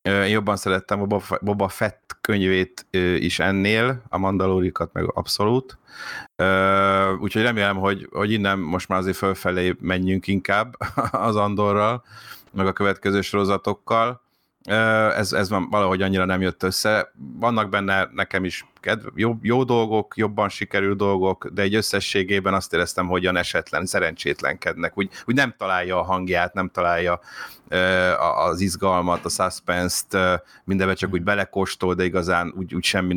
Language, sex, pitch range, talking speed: Hungarian, male, 90-105 Hz, 140 wpm